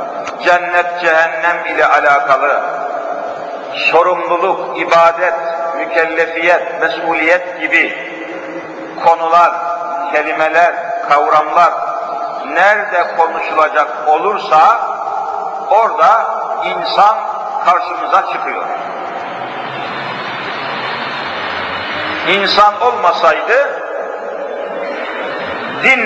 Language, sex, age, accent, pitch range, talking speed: Turkish, male, 50-69, native, 170-205 Hz, 50 wpm